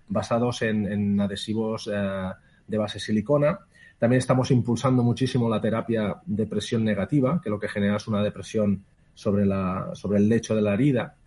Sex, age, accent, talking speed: male, 30-49, Spanish, 160 wpm